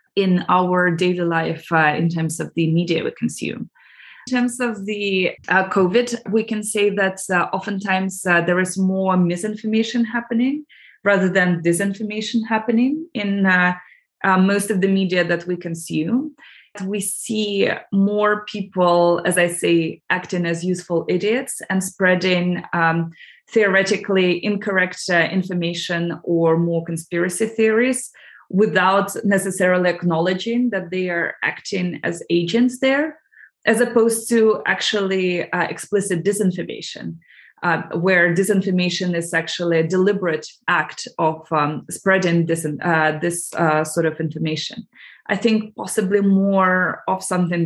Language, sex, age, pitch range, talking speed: English, female, 20-39, 175-210 Hz, 135 wpm